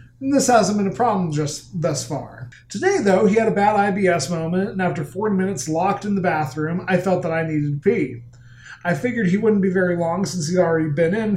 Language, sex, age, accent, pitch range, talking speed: English, male, 30-49, American, 155-210 Hz, 225 wpm